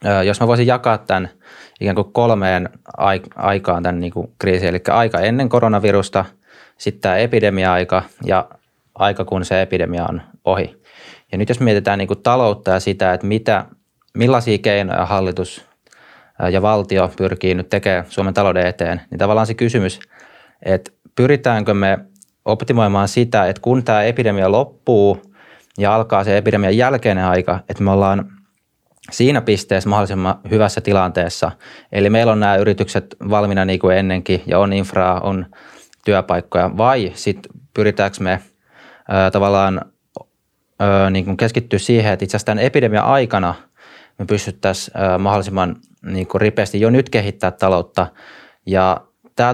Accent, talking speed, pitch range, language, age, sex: native, 145 wpm, 95-110 Hz, Finnish, 20-39, male